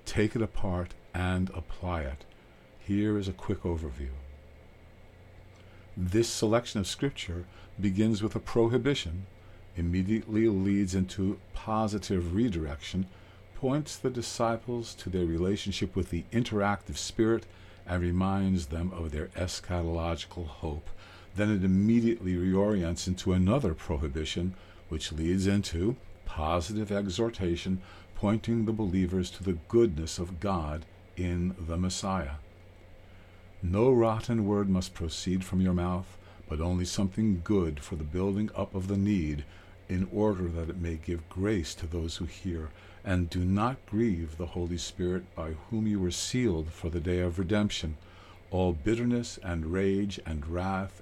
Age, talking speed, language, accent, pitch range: 50-69, 140 wpm, English, American, 85-100 Hz